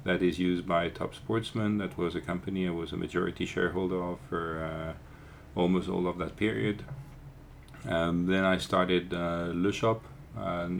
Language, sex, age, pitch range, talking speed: English, male, 40-59, 85-100 Hz, 170 wpm